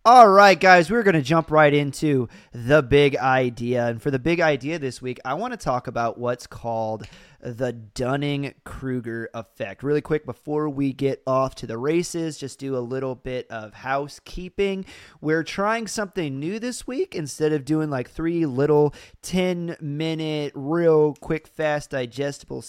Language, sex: English, male